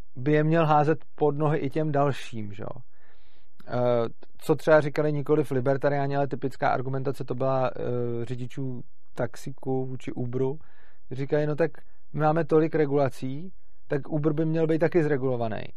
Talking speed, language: 150 wpm, Czech